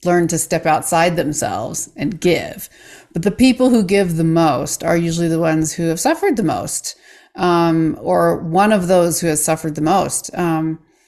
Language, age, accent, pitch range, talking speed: English, 40-59, American, 165-195 Hz, 185 wpm